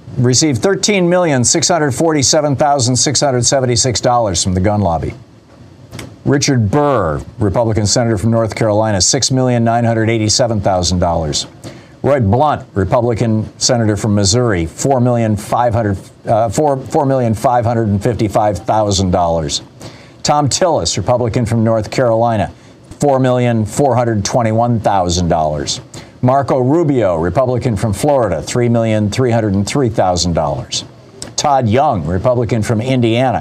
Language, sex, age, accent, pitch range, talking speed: English, male, 50-69, American, 110-130 Hz, 135 wpm